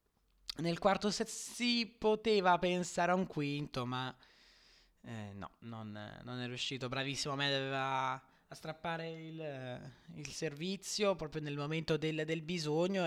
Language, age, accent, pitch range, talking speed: Italian, 20-39, native, 135-170 Hz, 140 wpm